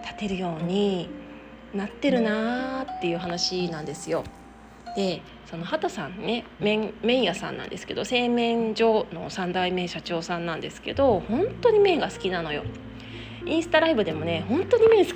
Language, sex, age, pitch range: Japanese, female, 20-39, 175-255 Hz